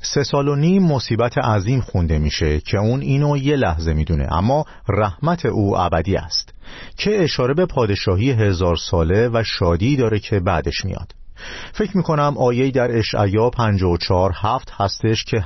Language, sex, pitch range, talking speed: Persian, male, 90-125 Hz, 150 wpm